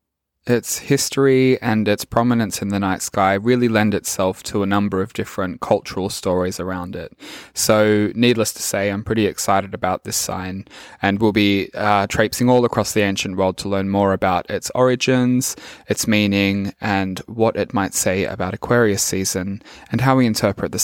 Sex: male